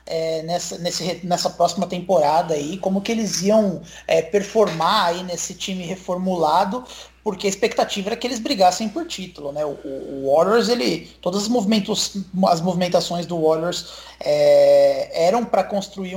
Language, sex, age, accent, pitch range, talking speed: Portuguese, male, 20-39, Brazilian, 165-205 Hz, 155 wpm